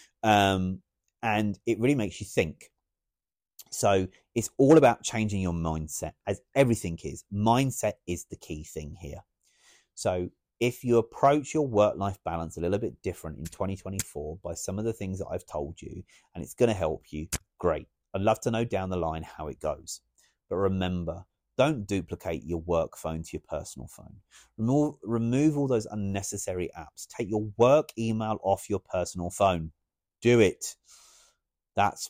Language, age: English, 30-49